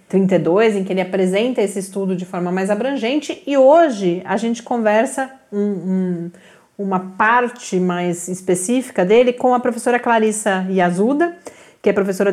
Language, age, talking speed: Portuguese, 40-59, 135 wpm